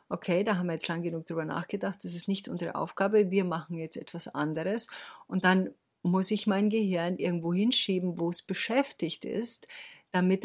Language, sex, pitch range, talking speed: German, female, 165-205 Hz, 185 wpm